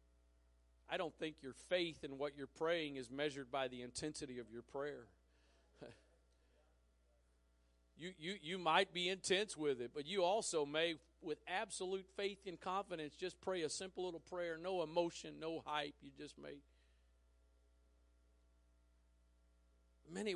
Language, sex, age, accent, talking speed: English, male, 50-69, American, 140 wpm